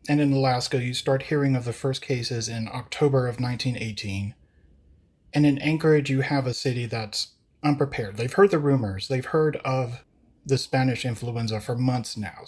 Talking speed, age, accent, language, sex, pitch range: 175 wpm, 30-49, American, English, male, 110-130 Hz